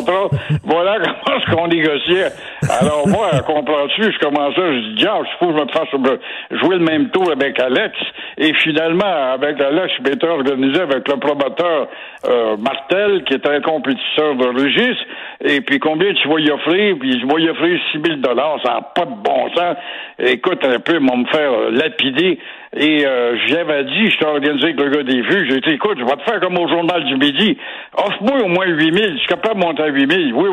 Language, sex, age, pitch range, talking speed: French, male, 60-79, 150-220 Hz, 205 wpm